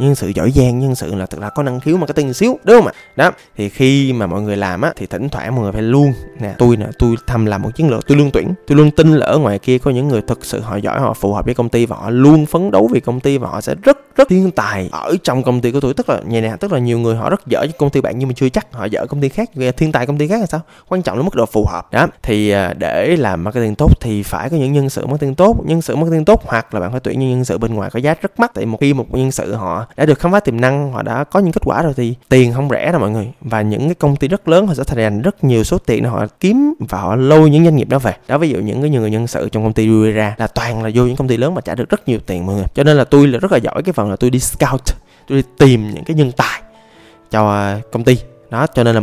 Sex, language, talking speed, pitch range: male, Vietnamese, 330 wpm, 110-145 Hz